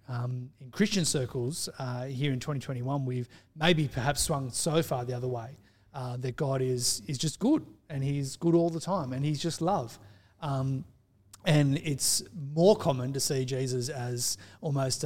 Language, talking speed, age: English, 175 wpm, 30-49